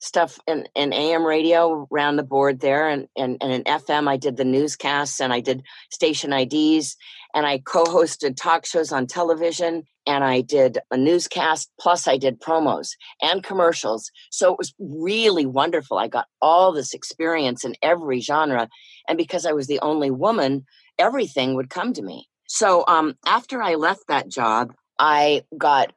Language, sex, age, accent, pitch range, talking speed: English, female, 50-69, American, 135-170 Hz, 175 wpm